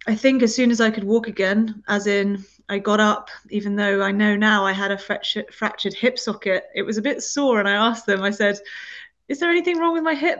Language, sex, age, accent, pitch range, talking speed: English, female, 30-49, British, 190-225 Hz, 250 wpm